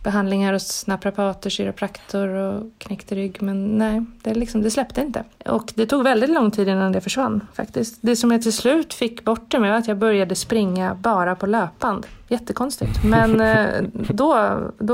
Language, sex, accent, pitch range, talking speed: Swedish, female, native, 195-225 Hz, 180 wpm